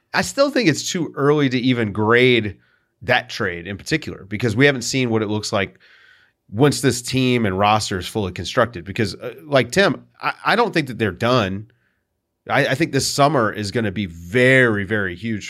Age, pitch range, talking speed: 30-49, 100-130 Hz, 200 wpm